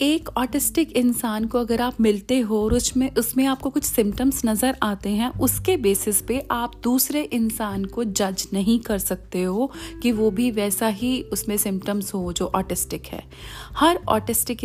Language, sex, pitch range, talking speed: Hindi, female, 205-260 Hz, 170 wpm